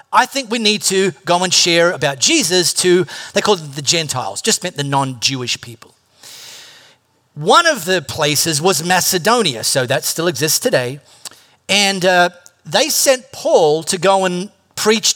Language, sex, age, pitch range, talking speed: English, male, 40-59, 150-220 Hz, 160 wpm